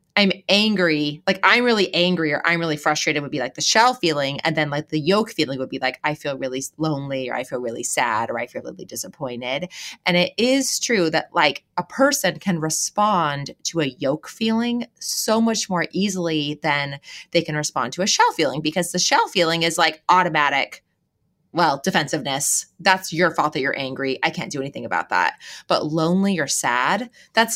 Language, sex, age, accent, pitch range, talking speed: English, female, 20-39, American, 160-235 Hz, 200 wpm